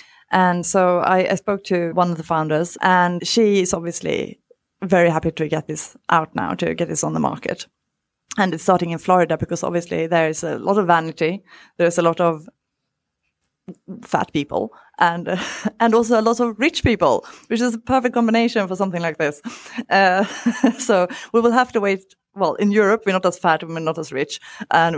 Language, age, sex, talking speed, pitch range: English, 30-49, female, 200 wpm, 165-200 Hz